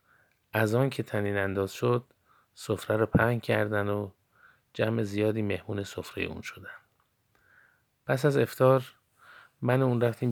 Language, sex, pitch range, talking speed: Persian, male, 100-120 Hz, 135 wpm